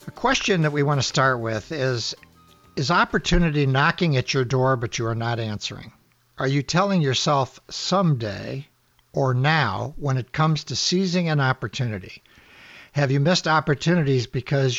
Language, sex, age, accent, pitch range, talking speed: English, male, 60-79, American, 130-160 Hz, 160 wpm